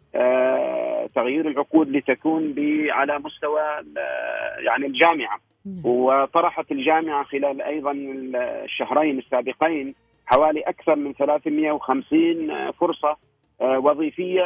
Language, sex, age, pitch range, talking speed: Arabic, male, 40-59, 140-175 Hz, 80 wpm